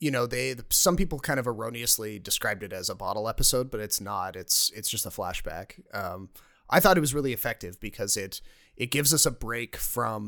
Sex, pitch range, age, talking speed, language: male, 105-130 Hz, 30-49, 215 wpm, English